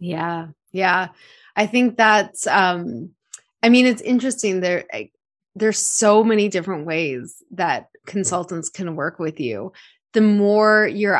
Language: English